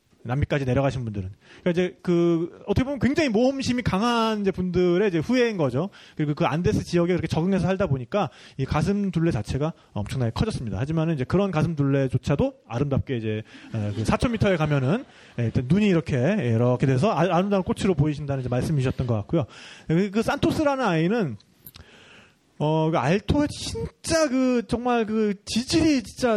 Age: 30-49